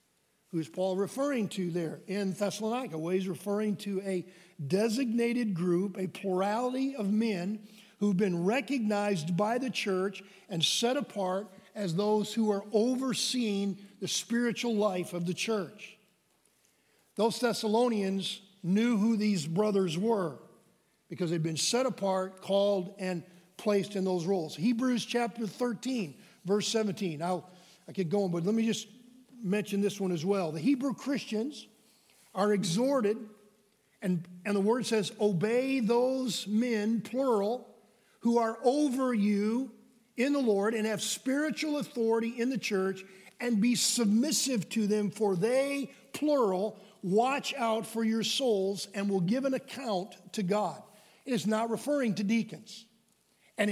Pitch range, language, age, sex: 195-235 Hz, English, 50-69, male